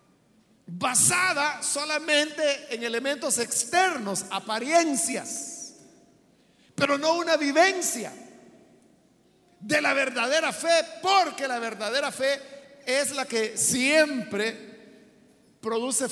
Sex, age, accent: male, 50-69, Mexican